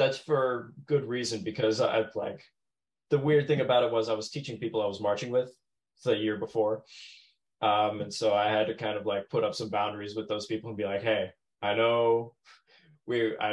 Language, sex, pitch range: English, male, 105-125 Hz